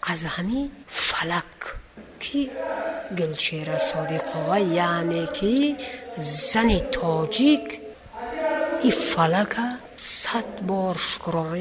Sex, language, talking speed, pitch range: female, Persian, 85 wpm, 165-230 Hz